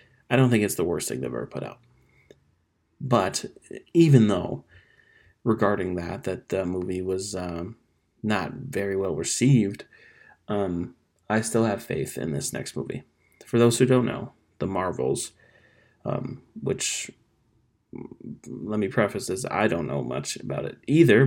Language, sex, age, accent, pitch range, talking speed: English, male, 30-49, American, 90-115 Hz, 150 wpm